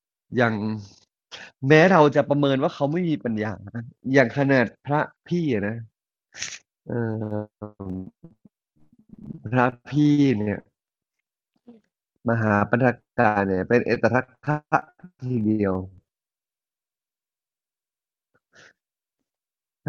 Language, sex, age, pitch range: Thai, male, 30-49, 110-135 Hz